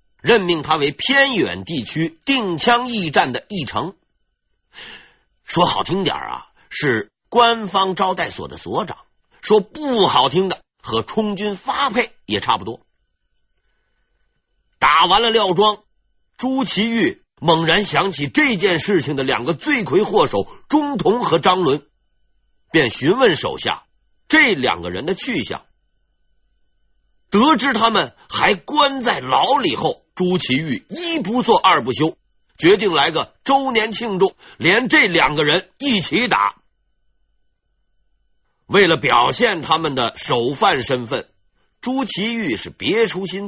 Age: 50-69